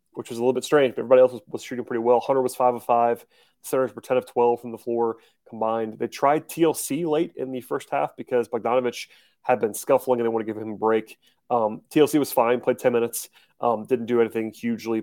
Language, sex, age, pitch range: English, male, 30-49, 115-130 Hz